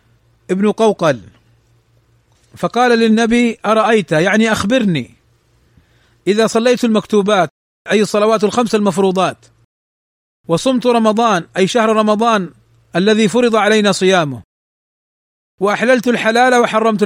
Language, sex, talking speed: Arabic, male, 90 wpm